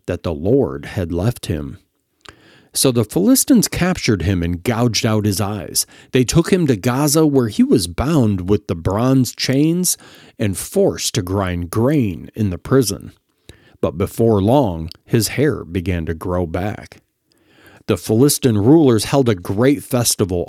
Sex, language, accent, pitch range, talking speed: male, English, American, 100-140 Hz, 155 wpm